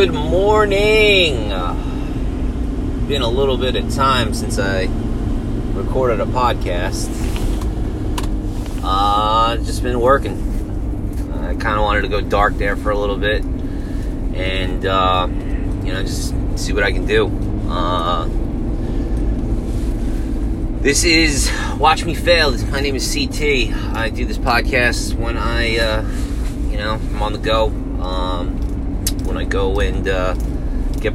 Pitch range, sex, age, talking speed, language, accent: 95-115 Hz, male, 30-49, 135 wpm, English, American